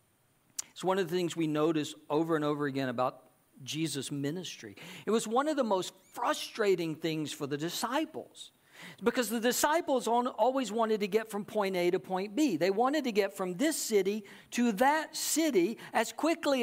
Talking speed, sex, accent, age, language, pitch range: 180 wpm, male, American, 50-69, English, 150-235 Hz